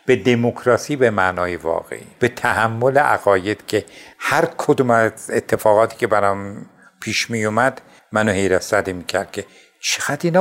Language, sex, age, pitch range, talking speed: Persian, male, 60-79, 110-140 Hz, 140 wpm